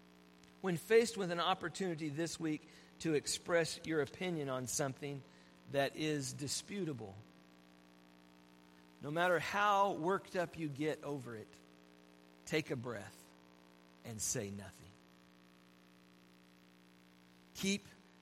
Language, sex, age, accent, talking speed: English, male, 50-69, American, 105 wpm